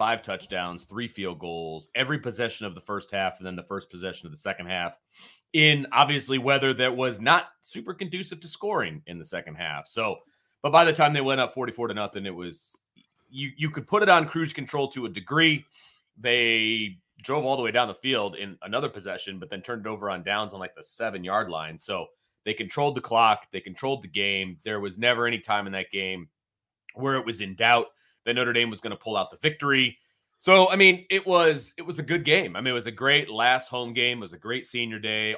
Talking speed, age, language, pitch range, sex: 235 wpm, 30-49, English, 100-140 Hz, male